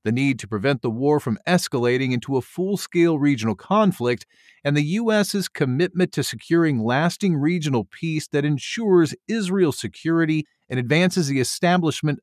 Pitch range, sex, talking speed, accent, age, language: 130-170 Hz, male, 145 wpm, American, 40-59, English